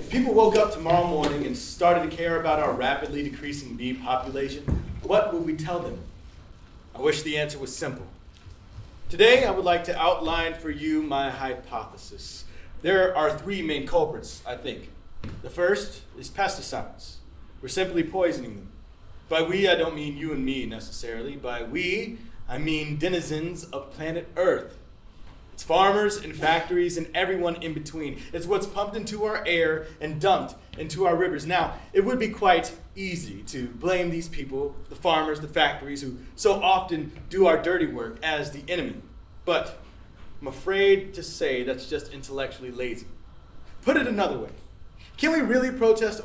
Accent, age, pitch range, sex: American, 30-49, 130-180 Hz, male